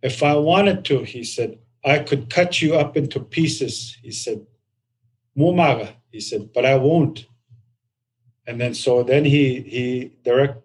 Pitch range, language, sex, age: 120-145 Hz, English, male, 50-69